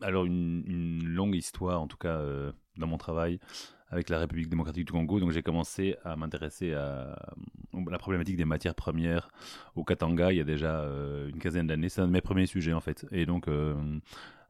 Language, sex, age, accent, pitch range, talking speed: French, male, 30-49, French, 80-95 Hz, 205 wpm